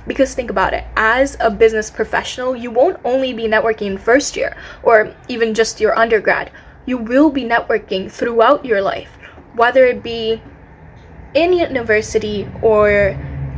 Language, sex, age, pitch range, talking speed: English, female, 10-29, 215-270 Hz, 145 wpm